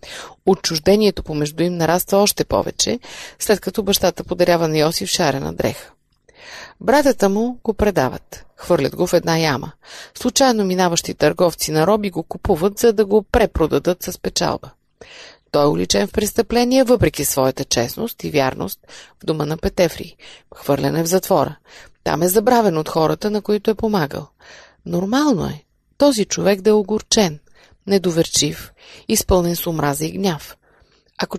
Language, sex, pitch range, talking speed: Bulgarian, female, 165-220 Hz, 145 wpm